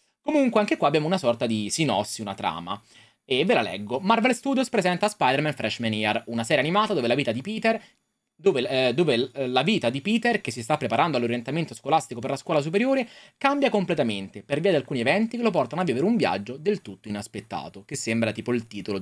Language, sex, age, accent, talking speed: Italian, male, 20-39, native, 215 wpm